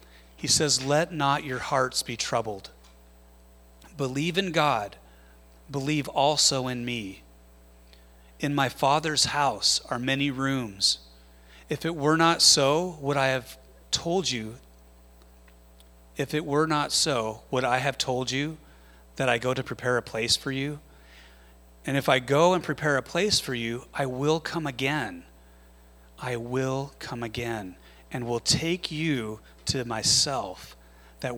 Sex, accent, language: male, American, English